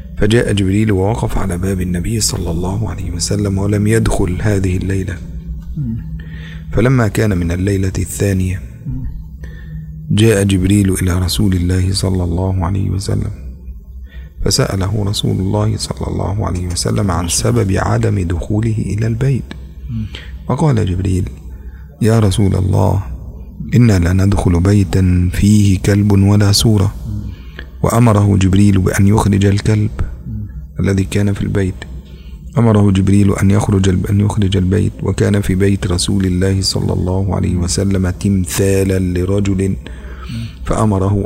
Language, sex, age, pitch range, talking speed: Indonesian, male, 40-59, 90-105 Hz, 120 wpm